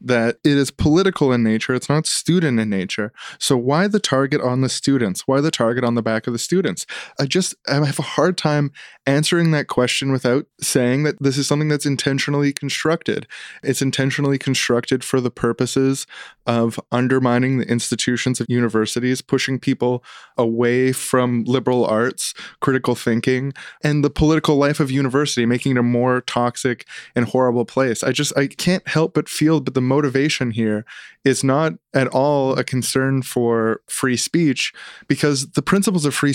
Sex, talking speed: male, 170 wpm